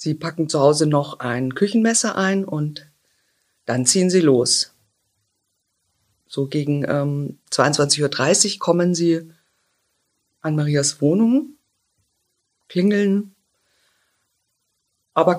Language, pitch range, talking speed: German, 140-180 Hz, 95 wpm